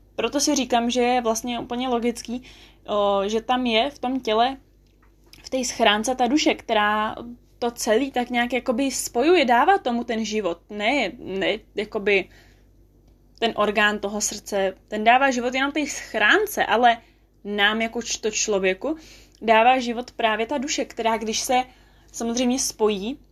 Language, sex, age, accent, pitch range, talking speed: Czech, female, 20-39, native, 220-255 Hz, 155 wpm